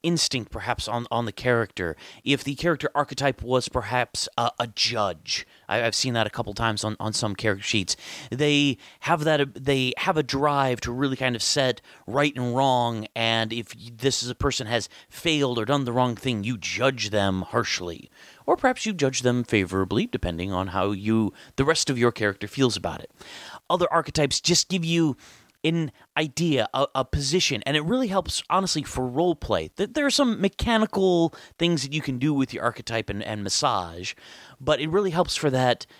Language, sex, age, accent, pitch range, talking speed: English, male, 30-49, American, 115-150 Hz, 195 wpm